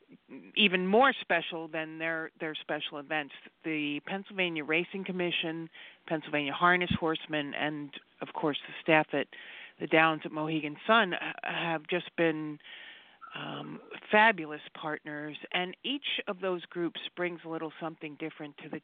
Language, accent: English, American